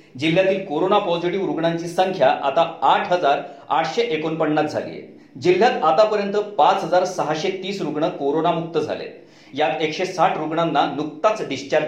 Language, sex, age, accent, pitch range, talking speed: Marathi, male, 40-59, native, 160-200 Hz, 65 wpm